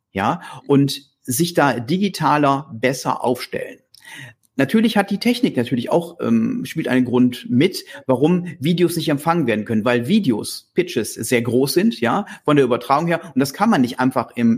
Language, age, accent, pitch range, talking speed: German, 40-59, German, 130-170 Hz, 175 wpm